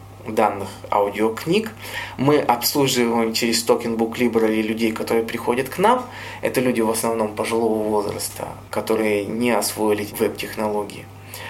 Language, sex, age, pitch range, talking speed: Russian, male, 20-39, 110-155 Hz, 115 wpm